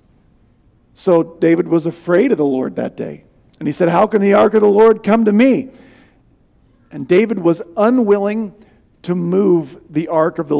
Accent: American